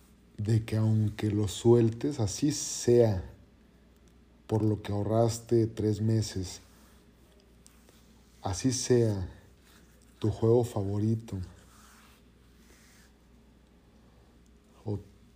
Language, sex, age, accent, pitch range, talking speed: Spanish, male, 40-59, Mexican, 95-115 Hz, 75 wpm